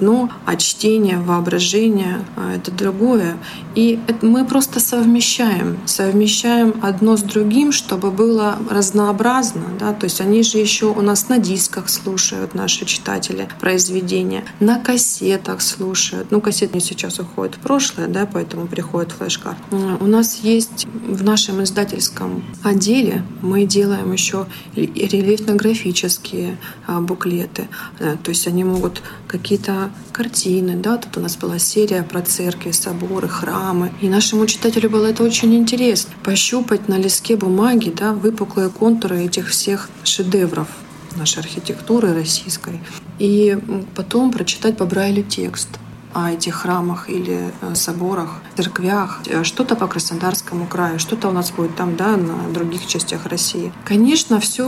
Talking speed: 135 wpm